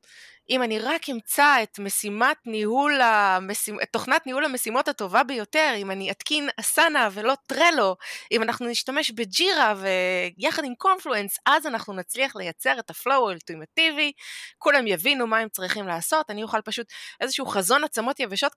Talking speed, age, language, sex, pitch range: 145 wpm, 20-39, Hebrew, female, 190-265 Hz